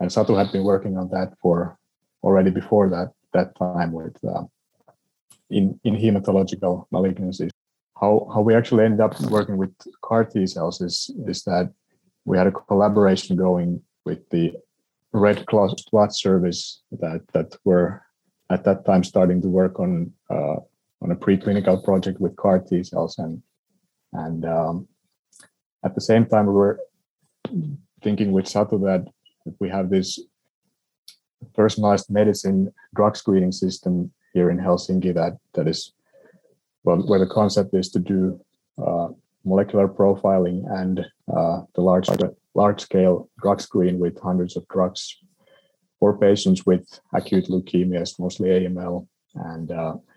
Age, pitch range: 30-49, 90-105 Hz